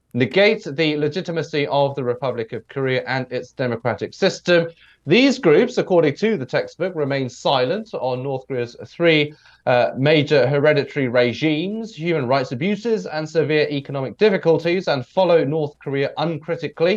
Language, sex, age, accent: English, male, 30-49, British